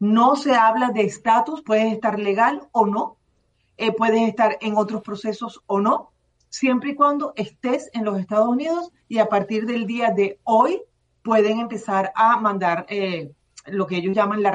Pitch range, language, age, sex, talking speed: 200-235 Hz, Spanish, 40-59, female, 175 wpm